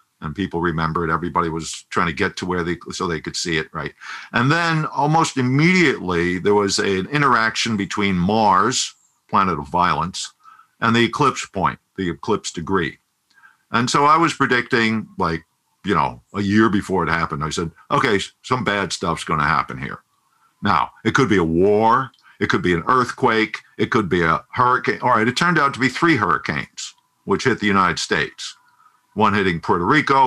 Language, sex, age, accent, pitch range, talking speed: English, male, 50-69, American, 90-145 Hz, 185 wpm